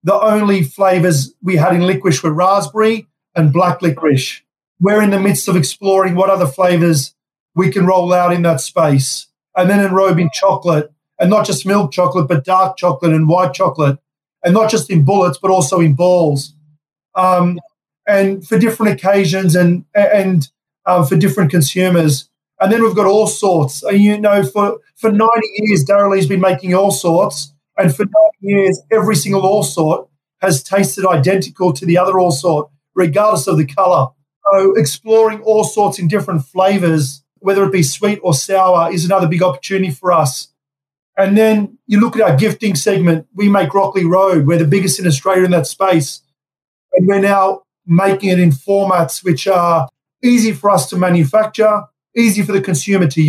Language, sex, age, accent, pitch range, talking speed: English, male, 30-49, Australian, 165-200 Hz, 180 wpm